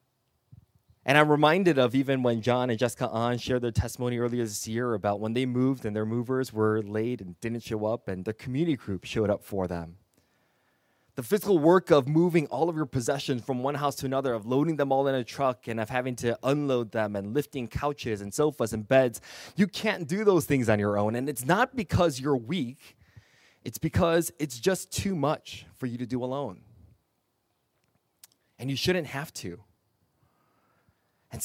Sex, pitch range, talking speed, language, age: male, 105-140 Hz, 195 wpm, English, 20-39